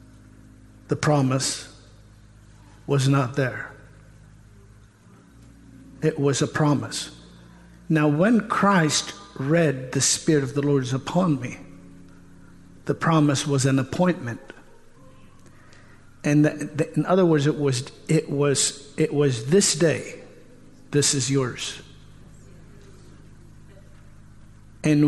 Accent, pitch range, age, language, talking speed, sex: American, 125-165 Hz, 60-79, English, 105 wpm, male